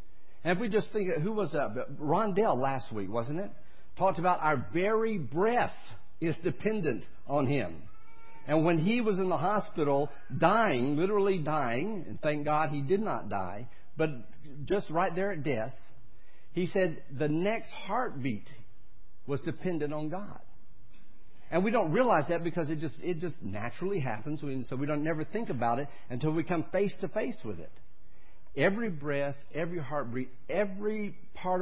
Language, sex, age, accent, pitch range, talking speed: English, male, 60-79, American, 130-185 Hz, 165 wpm